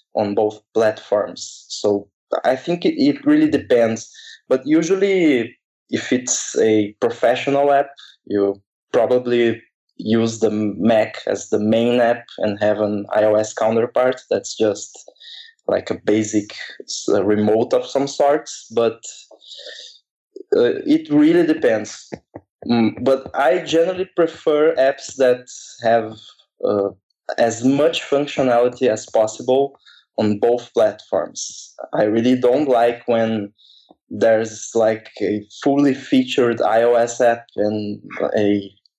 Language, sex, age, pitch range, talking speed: English, male, 20-39, 110-135 Hz, 115 wpm